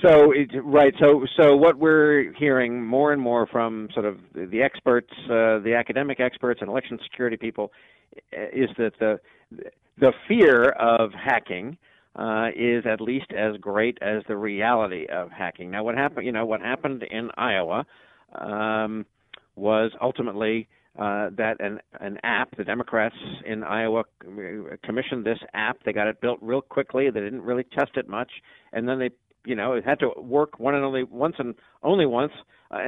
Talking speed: 170 wpm